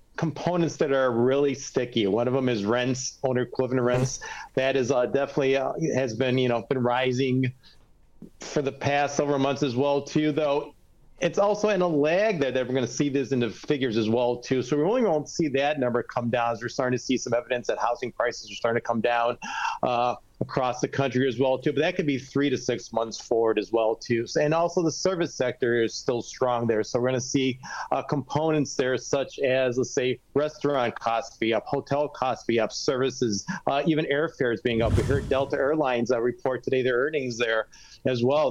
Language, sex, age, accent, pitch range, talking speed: English, male, 40-59, American, 120-145 Hz, 220 wpm